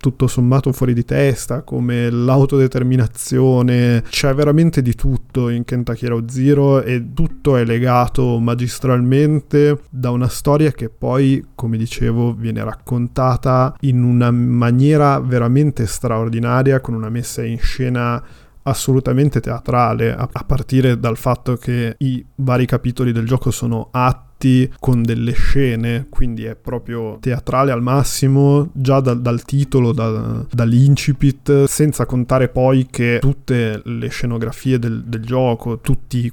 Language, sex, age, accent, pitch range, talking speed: Italian, male, 20-39, native, 120-135 Hz, 130 wpm